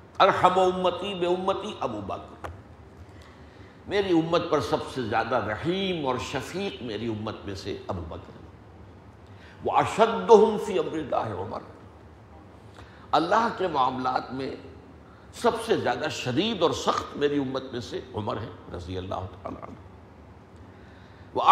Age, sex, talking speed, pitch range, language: 60-79, male, 130 wpm, 95-130 Hz, Urdu